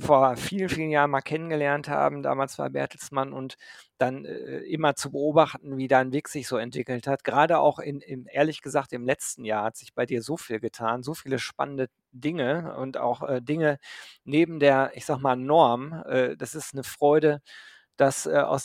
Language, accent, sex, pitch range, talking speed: German, German, male, 130-155 Hz, 195 wpm